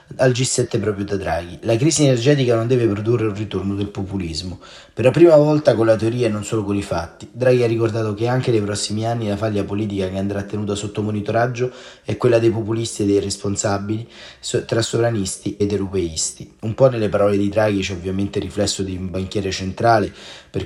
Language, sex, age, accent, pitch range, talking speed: Italian, male, 30-49, native, 100-130 Hz, 205 wpm